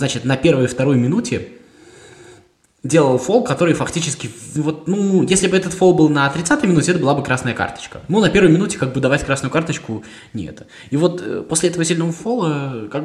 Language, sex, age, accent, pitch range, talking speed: Russian, male, 20-39, native, 110-155 Hz, 195 wpm